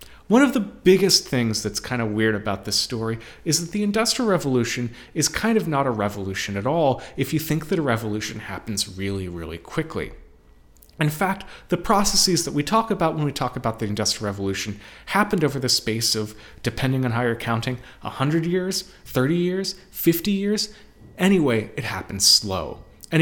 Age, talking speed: 30-49, 185 wpm